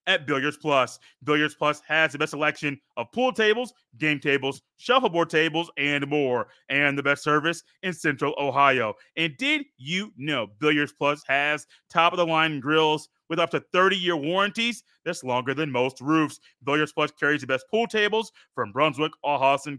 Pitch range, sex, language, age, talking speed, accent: 140-180 Hz, male, English, 30-49, 165 wpm, American